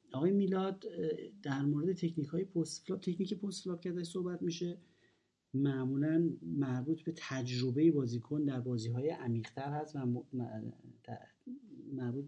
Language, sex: Persian, male